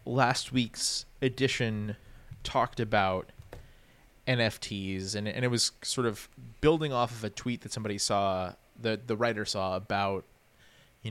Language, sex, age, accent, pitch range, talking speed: English, male, 20-39, American, 100-120 Hz, 140 wpm